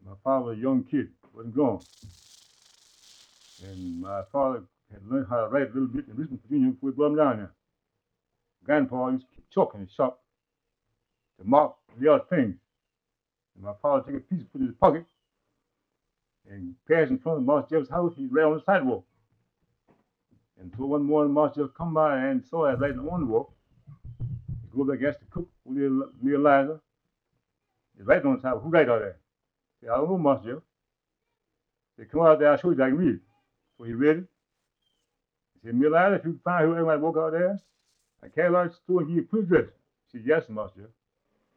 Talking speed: 220 wpm